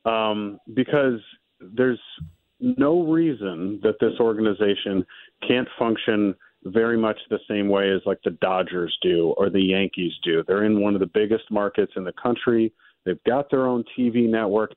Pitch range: 100-115 Hz